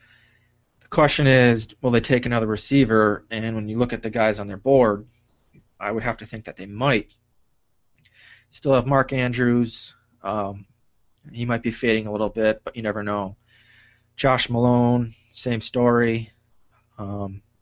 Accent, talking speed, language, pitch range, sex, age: American, 155 wpm, English, 105-120 Hz, male, 20-39